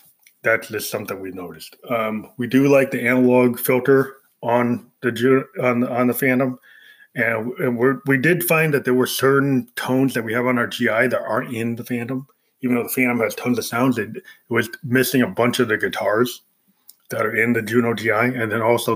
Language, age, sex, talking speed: English, 30-49, male, 205 wpm